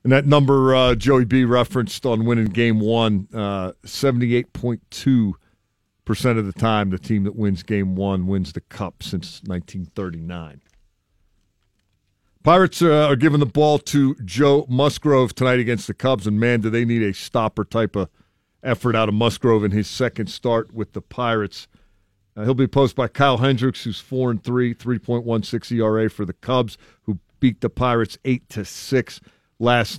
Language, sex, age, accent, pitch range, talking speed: English, male, 50-69, American, 105-130 Hz, 155 wpm